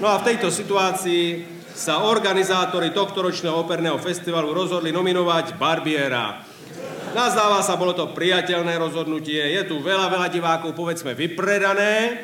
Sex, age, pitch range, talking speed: male, 40-59, 150-195 Hz, 125 wpm